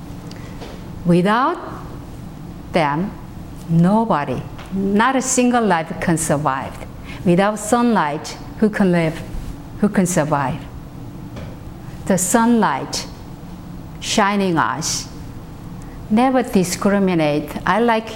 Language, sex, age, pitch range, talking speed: English, female, 50-69, 155-200 Hz, 85 wpm